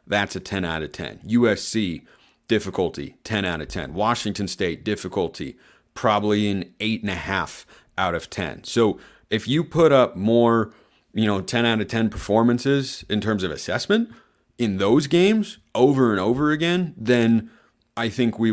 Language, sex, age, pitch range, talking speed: English, male, 30-49, 100-125 Hz, 170 wpm